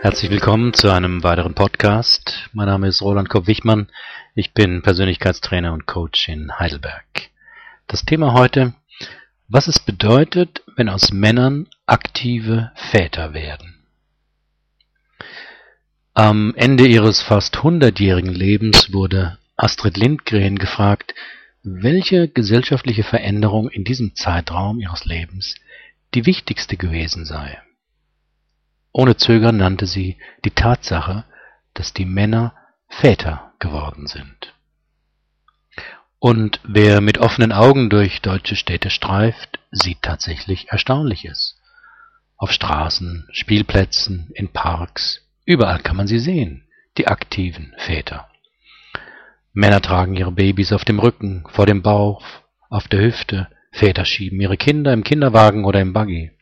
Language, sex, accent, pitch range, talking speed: German, male, German, 95-115 Hz, 120 wpm